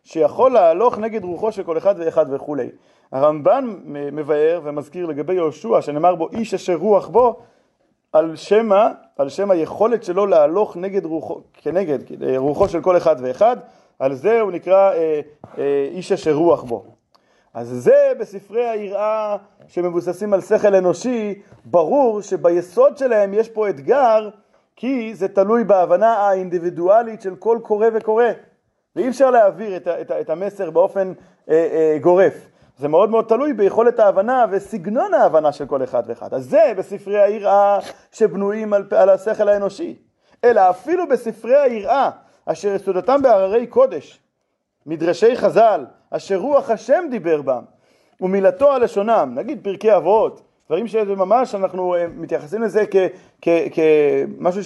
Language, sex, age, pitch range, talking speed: Hebrew, male, 30-49, 175-225 Hz, 140 wpm